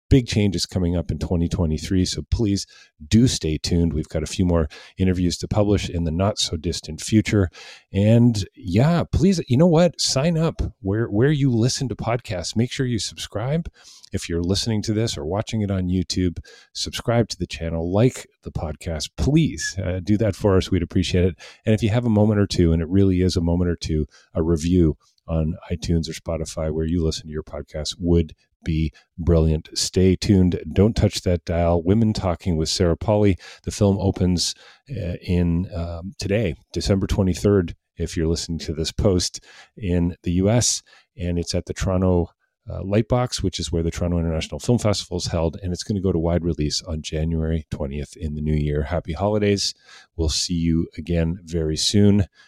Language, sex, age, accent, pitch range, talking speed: English, male, 40-59, American, 80-105 Hz, 190 wpm